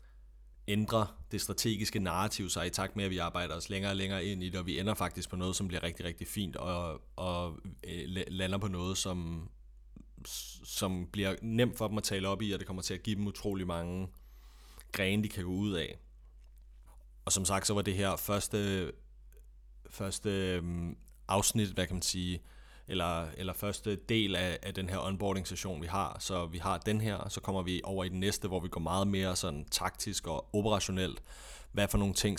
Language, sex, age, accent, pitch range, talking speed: Danish, male, 30-49, native, 85-100 Hz, 205 wpm